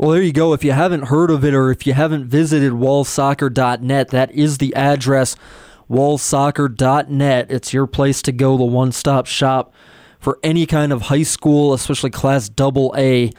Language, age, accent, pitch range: English, 20-39, American, 130-155 Hz